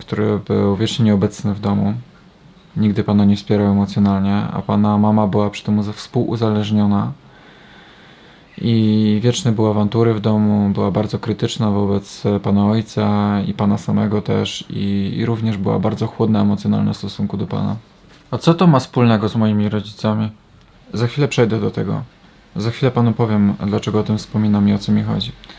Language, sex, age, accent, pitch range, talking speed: Polish, male, 20-39, native, 105-115 Hz, 165 wpm